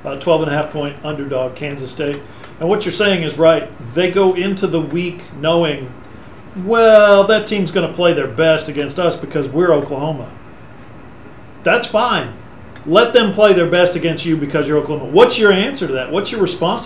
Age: 40-59